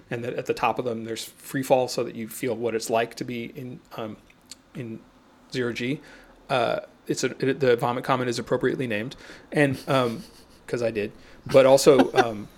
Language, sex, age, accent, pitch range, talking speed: English, male, 30-49, American, 115-150 Hz, 200 wpm